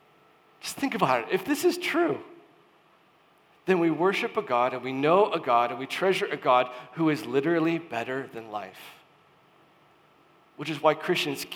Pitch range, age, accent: 140-210 Hz, 40-59, American